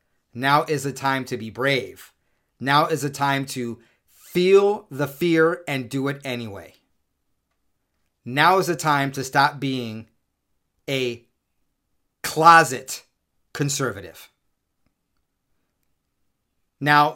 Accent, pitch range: American, 120-150 Hz